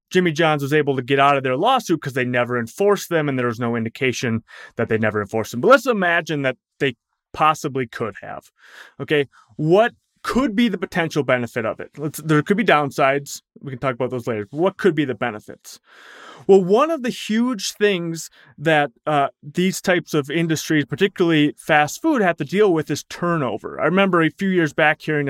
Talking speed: 200 wpm